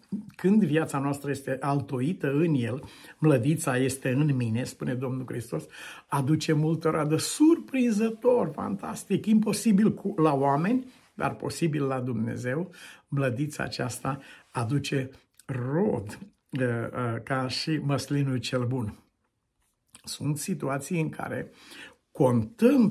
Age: 60-79